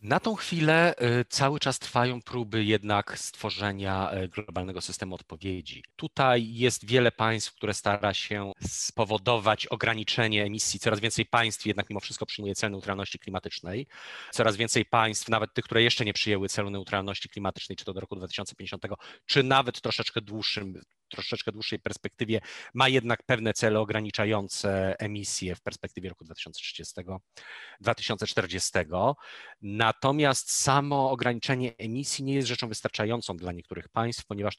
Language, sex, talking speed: Polish, male, 135 wpm